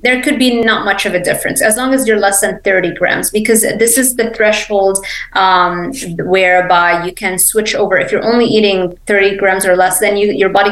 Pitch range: 180-215 Hz